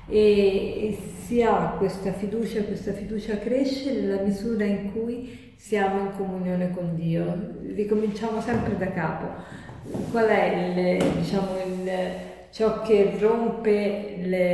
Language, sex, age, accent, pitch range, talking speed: Italian, female, 40-59, native, 185-220 Hz, 125 wpm